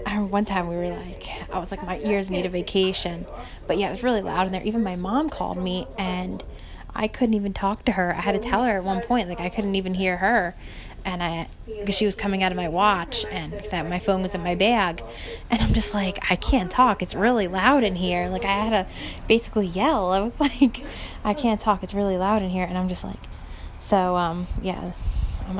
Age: 10-29